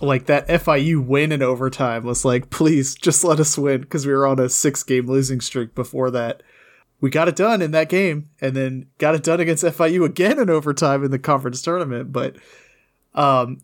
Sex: male